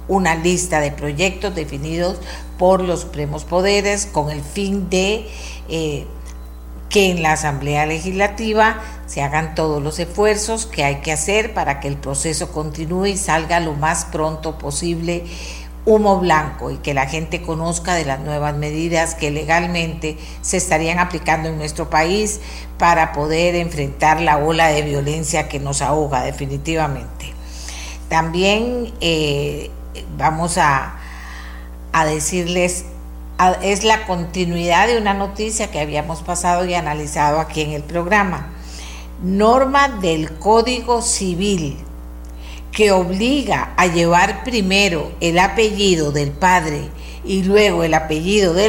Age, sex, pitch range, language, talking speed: 50-69, female, 145-185 Hz, Spanish, 135 wpm